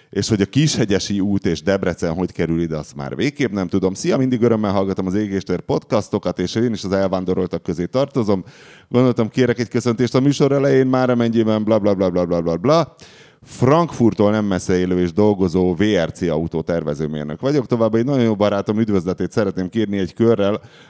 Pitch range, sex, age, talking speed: 85-115 Hz, male, 30-49, 185 wpm